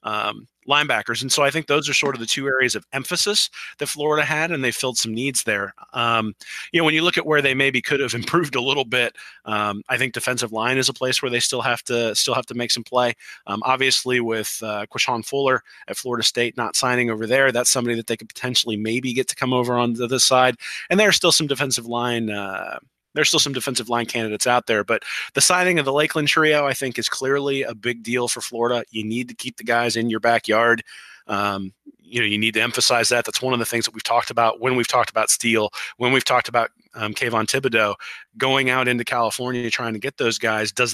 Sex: male